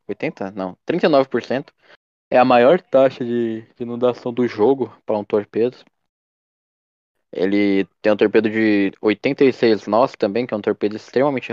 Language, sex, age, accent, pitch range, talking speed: Portuguese, male, 20-39, Brazilian, 110-140 Hz, 135 wpm